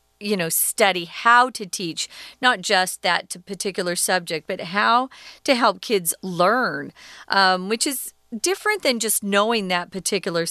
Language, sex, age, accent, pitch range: Chinese, female, 40-59, American, 180-240 Hz